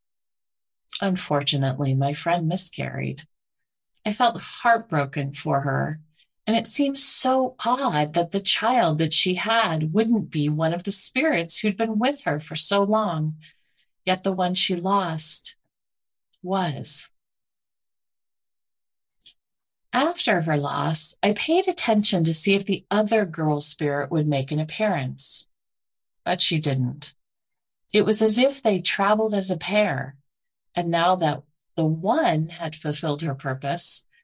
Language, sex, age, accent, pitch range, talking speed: English, female, 30-49, American, 150-220 Hz, 135 wpm